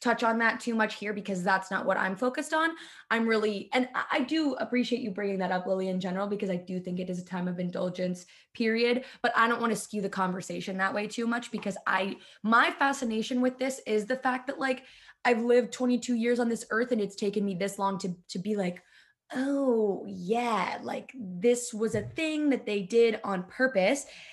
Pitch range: 195-245 Hz